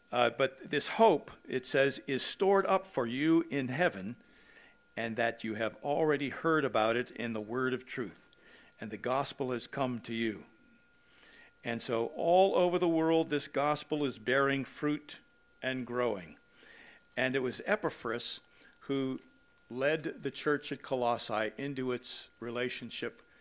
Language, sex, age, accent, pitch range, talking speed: English, male, 60-79, American, 130-165 Hz, 150 wpm